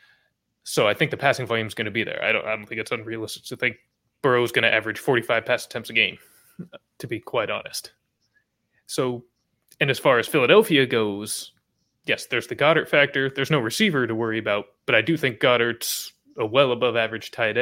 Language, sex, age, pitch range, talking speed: English, male, 20-39, 115-140 Hz, 210 wpm